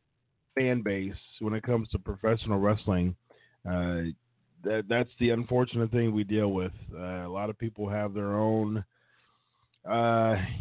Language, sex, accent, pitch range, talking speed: English, male, American, 100-130 Hz, 145 wpm